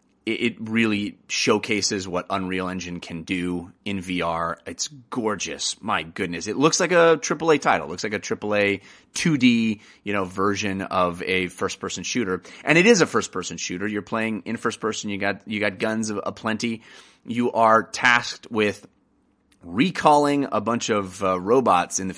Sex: male